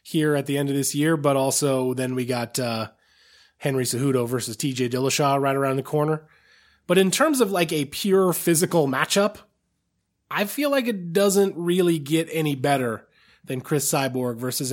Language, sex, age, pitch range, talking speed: English, male, 20-39, 140-185 Hz, 180 wpm